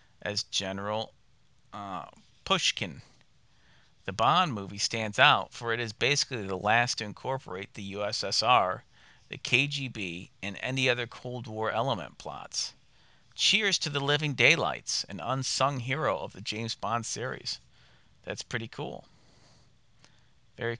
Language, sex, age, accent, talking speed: English, male, 50-69, American, 130 wpm